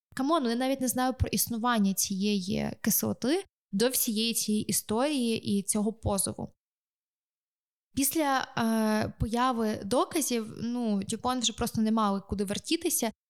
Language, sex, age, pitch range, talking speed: Ukrainian, female, 20-39, 215-255 Hz, 125 wpm